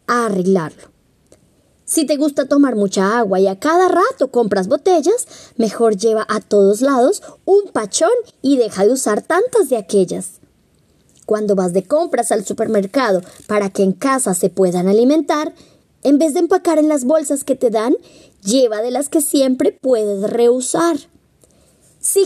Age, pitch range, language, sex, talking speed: 20-39, 225-315 Hz, Spanish, male, 160 wpm